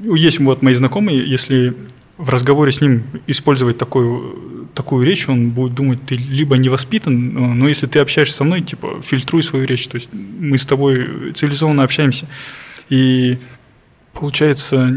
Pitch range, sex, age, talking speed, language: 125-140 Hz, male, 20-39, 155 wpm, Russian